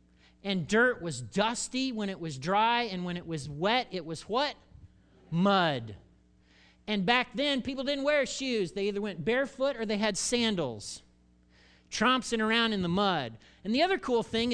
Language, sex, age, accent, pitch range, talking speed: English, male, 40-59, American, 165-240 Hz, 175 wpm